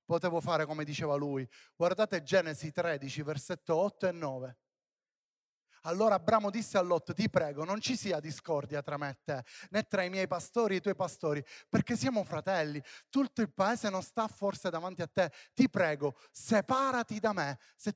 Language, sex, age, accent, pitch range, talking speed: Italian, male, 30-49, native, 145-200 Hz, 180 wpm